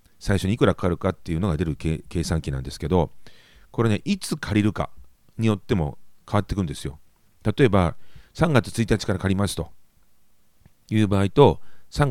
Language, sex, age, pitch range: Japanese, male, 40-59, 85-120 Hz